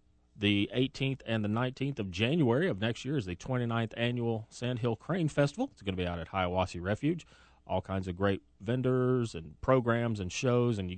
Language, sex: English, male